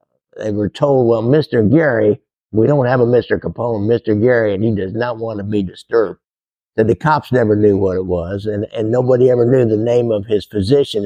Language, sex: English, male